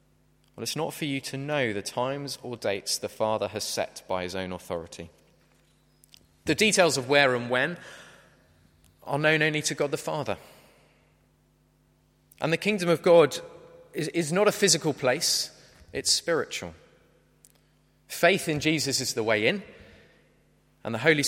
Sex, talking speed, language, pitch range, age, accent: male, 150 wpm, English, 95-150 Hz, 20-39, British